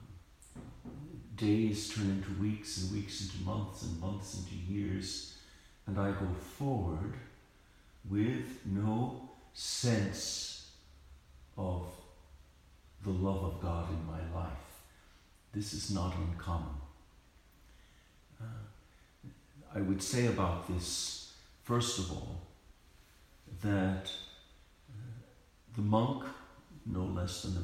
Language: English